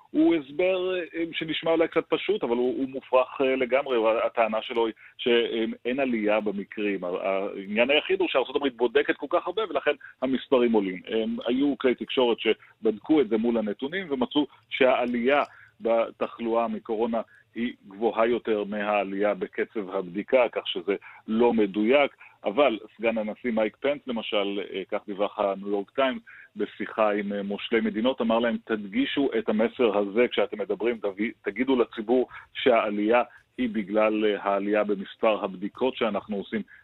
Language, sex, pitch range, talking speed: Hebrew, male, 105-130 Hz, 135 wpm